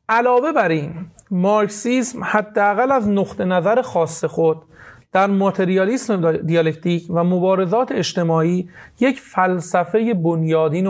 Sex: male